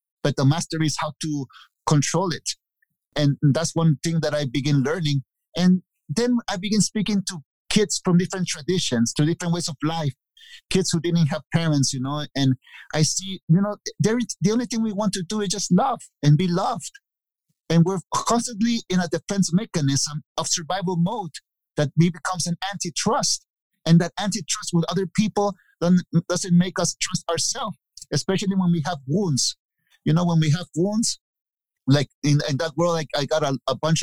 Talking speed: 180 wpm